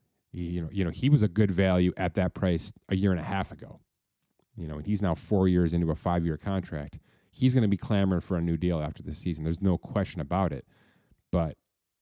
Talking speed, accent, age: 235 wpm, American, 30-49